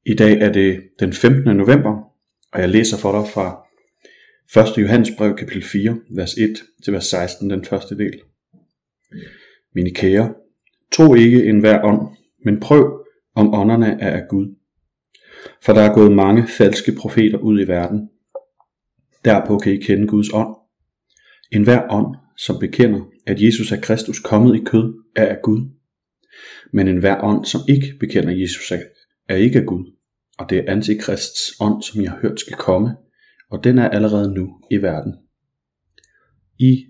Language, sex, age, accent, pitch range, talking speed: Danish, male, 30-49, native, 100-115 Hz, 165 wpm